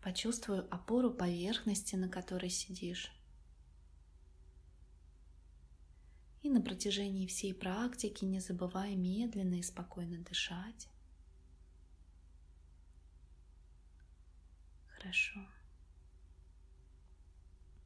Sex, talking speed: female, 60 wpm